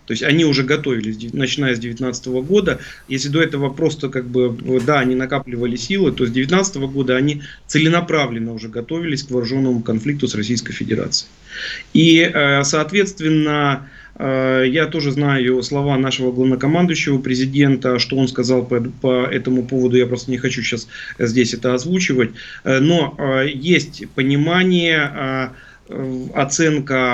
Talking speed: 135 wpm